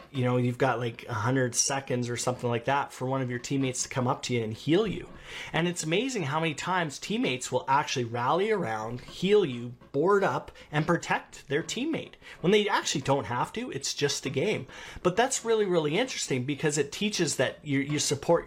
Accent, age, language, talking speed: American, 30-49, English, 210 wpm